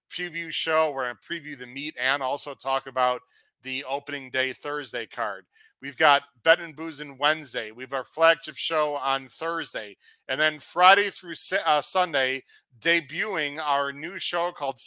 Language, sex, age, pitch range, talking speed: English, male, 40-59, 130-155 Hz, 160 wpm